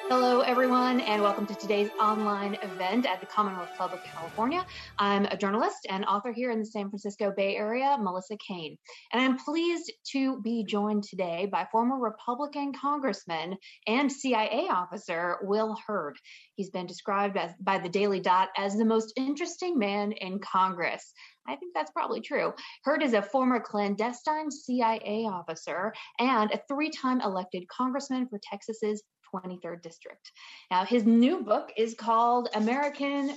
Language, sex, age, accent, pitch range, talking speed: English, female, 20-39, American, 200-260 Hz, 155 wpm